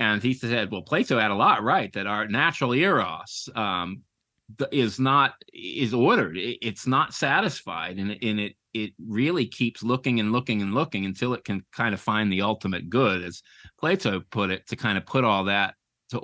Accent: American